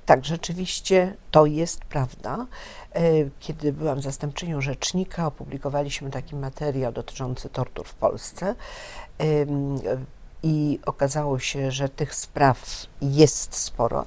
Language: Polish